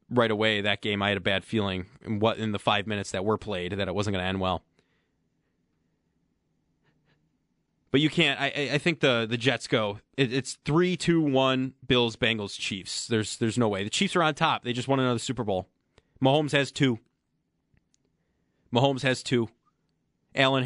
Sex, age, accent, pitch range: male, 30-49, American, 105-135 Hz